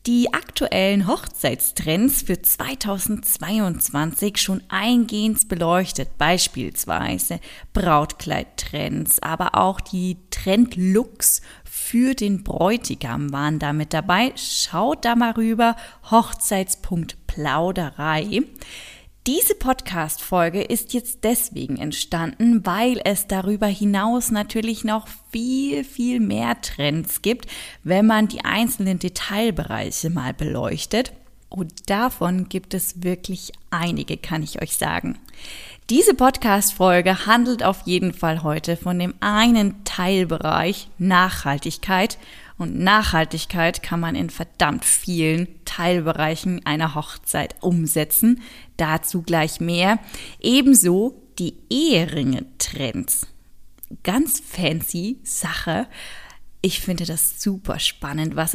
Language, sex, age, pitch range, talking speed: German, female, 20-39, 165-220 Hz, 100 wpm